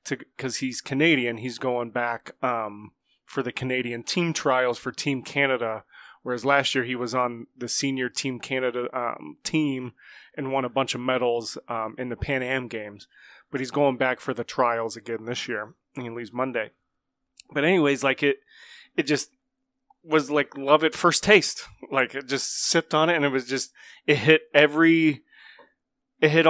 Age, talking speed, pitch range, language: 30-49, 180 wpm, 130-150 Hz, English